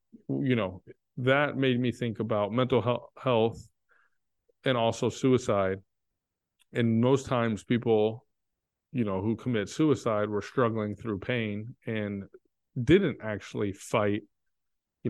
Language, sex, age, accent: English, male, 30-49, American